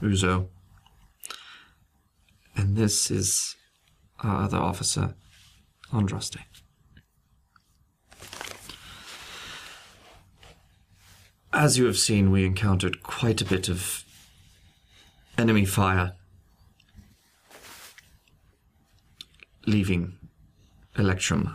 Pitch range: 85-100 Hz